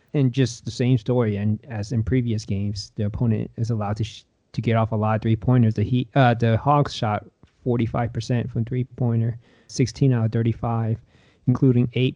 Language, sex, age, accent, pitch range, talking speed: English, male, 20-39, American, 105-125 Hz, 210 wpm